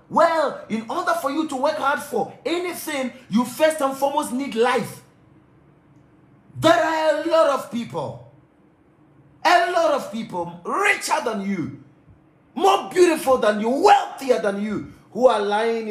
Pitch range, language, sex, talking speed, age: 165-260 Hz, English, male, 145 wpm, 40-59